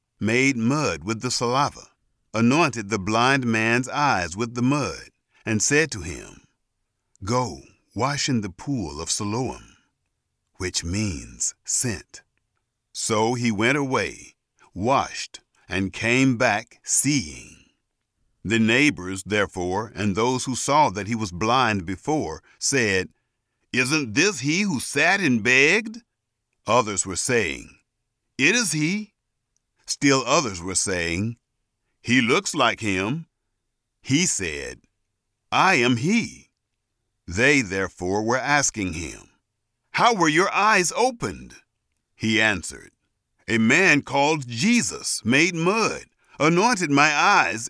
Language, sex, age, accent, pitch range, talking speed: English, male, 50-69, American, 105-145 Hz, 120 wpm